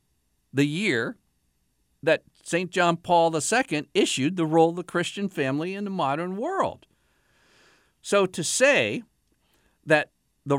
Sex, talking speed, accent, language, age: male, 130 wpm, American, English, 50-69